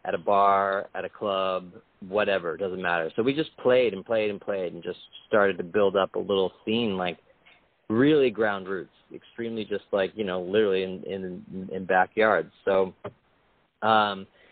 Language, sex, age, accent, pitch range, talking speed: English, male, 40-59, American, 95-140 Hz, 180 wpm